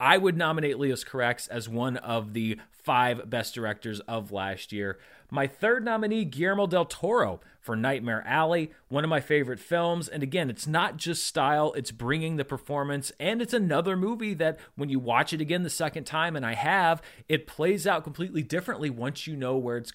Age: 30-49